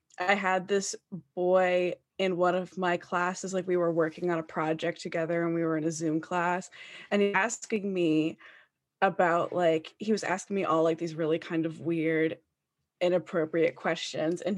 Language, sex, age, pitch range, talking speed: English, female, 20-39, 170-205 Hz, 180 wpm